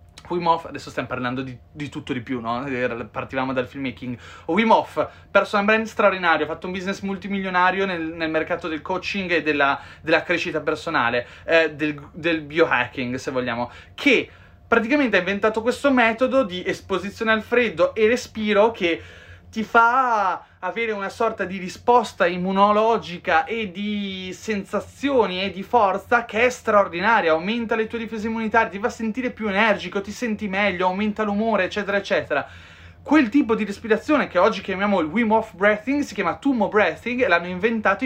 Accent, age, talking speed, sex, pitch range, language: native, 30-49, 165 wpm, male, 165-225 Hz, Italian